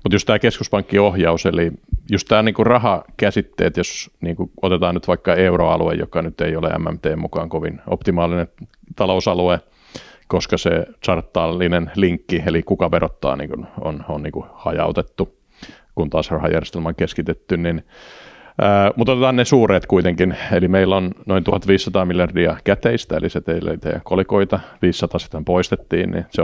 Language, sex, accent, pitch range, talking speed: Finnish, male, native, 85-100 Hz, 145 wpm